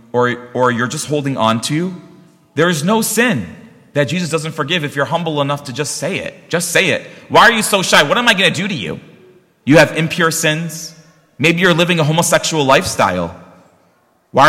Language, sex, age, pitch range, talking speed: English, male, 30-49, 140-180 Hz, 205 wpm